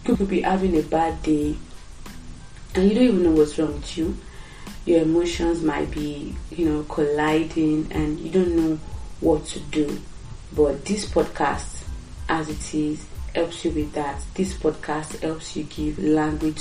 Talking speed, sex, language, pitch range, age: 165 wpm, female, English, 150-175 Hz, 30-49